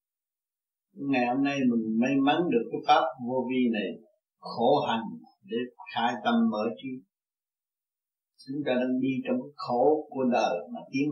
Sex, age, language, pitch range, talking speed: male, 60-79, Vietnamese, 125-150 Hz, 160 wpm